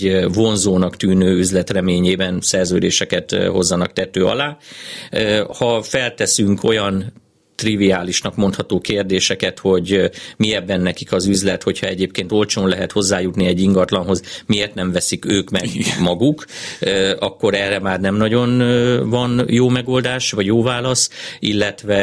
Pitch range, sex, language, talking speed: 95-105 Hz, male, Hungarian, 125 wpm